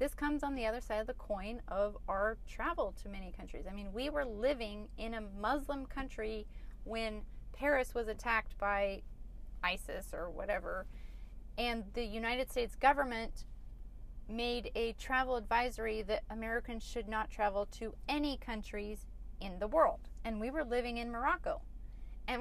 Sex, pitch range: female, 220-290 Hz